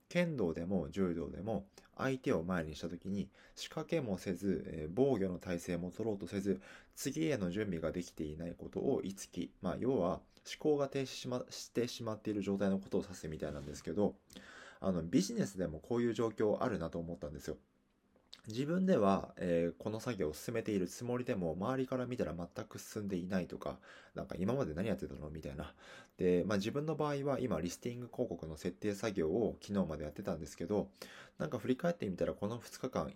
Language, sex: Japanese, male